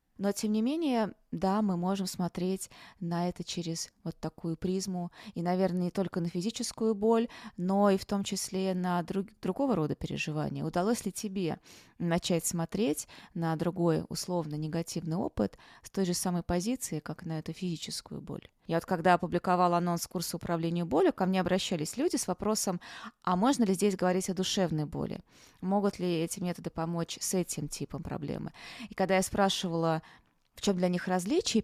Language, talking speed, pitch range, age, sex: Russian, 170 wpm, 170-195 Hz, 20-39, female